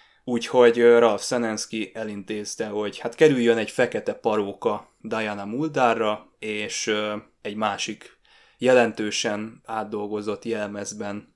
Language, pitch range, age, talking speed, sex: Hungarian, 105-120 Hz, 20-39, 95 wpm, male